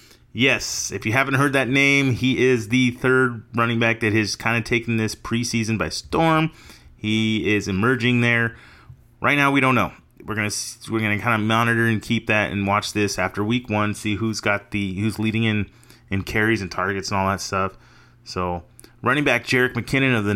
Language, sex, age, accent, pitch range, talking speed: English, male, 30-49, American, 105-125 Hz, 205 wpm